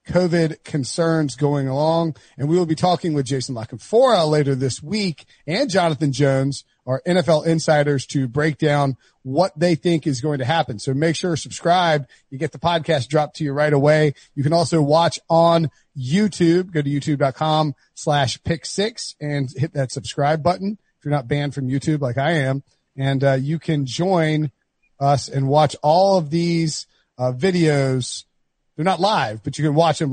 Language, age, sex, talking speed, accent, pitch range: English, 40-59, male, 185 wpm, American, 140-175 Hz